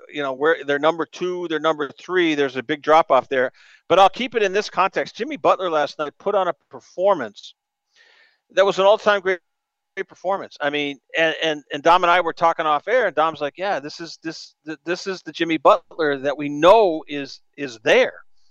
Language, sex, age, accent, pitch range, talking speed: English, male, 50-69, American, 155-215 Hz, 220 wpm